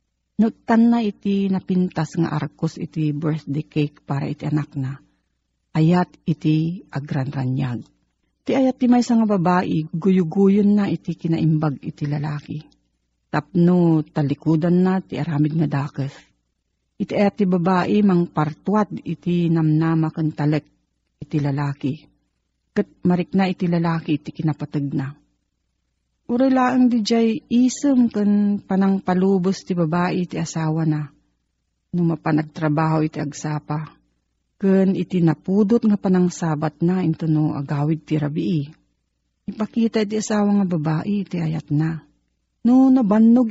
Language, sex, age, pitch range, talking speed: Filipino, female, 40-59, 150-195 Hz, 130 wpm